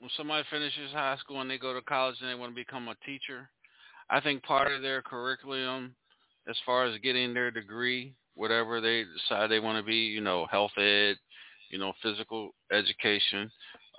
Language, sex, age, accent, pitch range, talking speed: English, male, 40-59, American, 110-130 Hz, 190 wpm